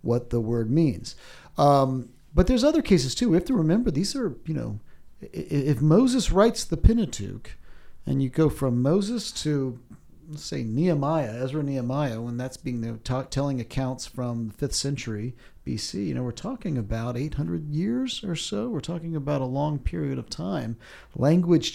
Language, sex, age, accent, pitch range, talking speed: English, male, 40-59, American, 110-155 Hz, 175 wpm